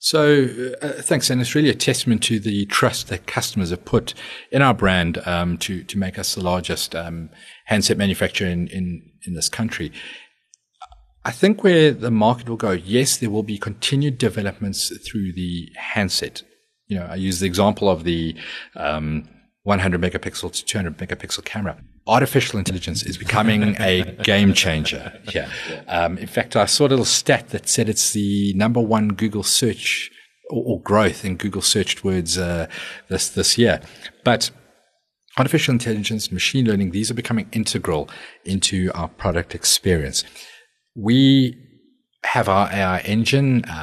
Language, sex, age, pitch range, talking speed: English, male, 40-59, 95-120 Hz, 160 wpm